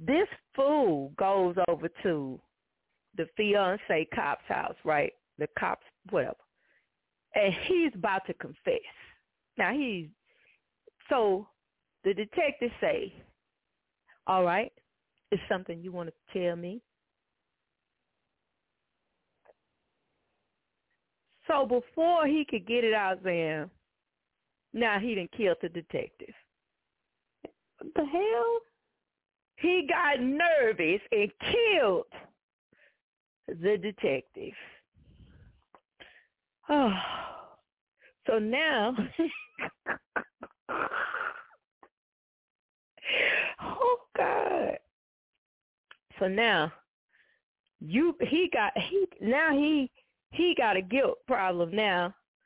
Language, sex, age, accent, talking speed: English, female, 40-59, American, 85 wpm